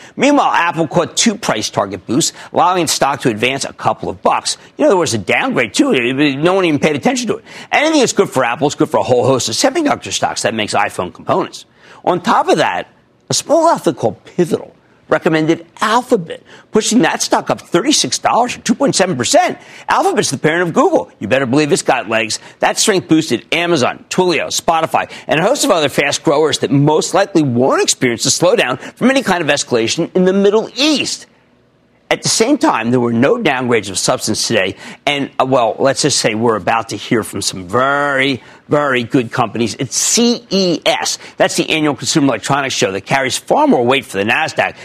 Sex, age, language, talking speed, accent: male, 50-69, English, 200 wpm, American